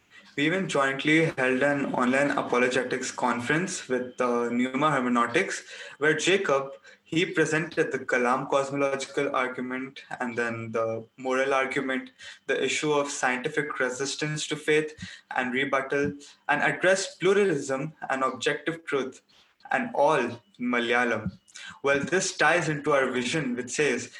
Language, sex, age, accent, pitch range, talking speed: English, male, 20-39, Indian, 130-155 Hz, 125 wpm